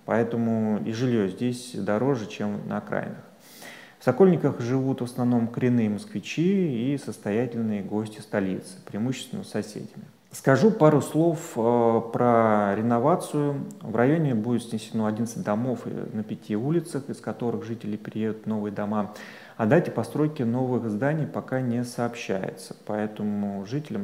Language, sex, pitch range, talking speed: Russian, male, 110-140 Hz, 130 wpm